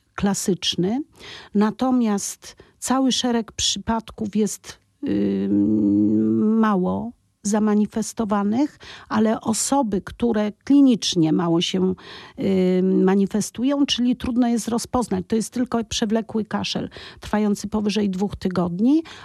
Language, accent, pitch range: Polish, native, 190-235 Hz